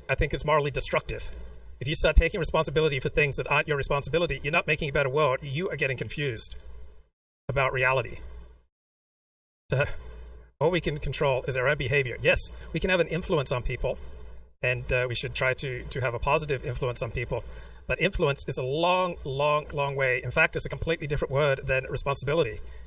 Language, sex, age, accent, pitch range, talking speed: English, male, 40-59, American, 115-150 Hz, 195 wpm